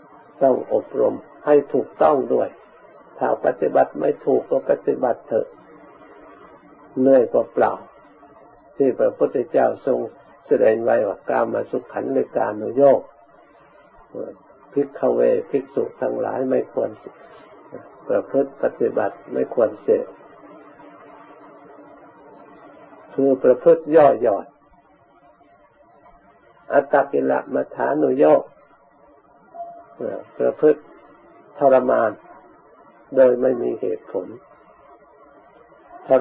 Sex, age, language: male, 60-79, Thai